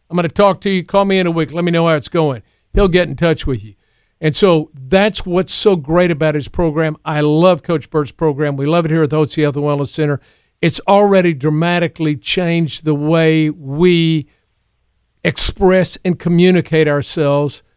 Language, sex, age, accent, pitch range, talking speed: English, male, 50-69, American, 160-230 Hz, 200 wpm